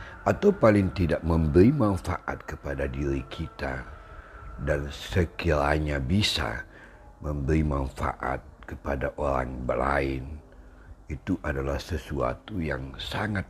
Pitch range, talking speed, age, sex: 70-85 Hz, 95 wpm, 60-79, male